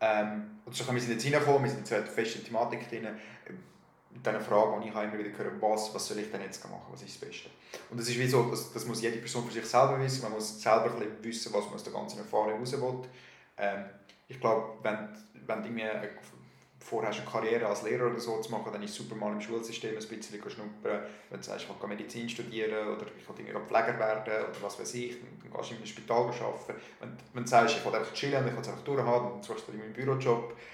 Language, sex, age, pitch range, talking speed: German, male, 30-49, 105-125 Hz, 250 wpm